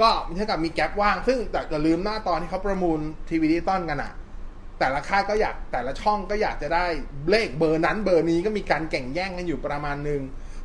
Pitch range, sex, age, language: 145-200 Hz, male, 20-39, Thai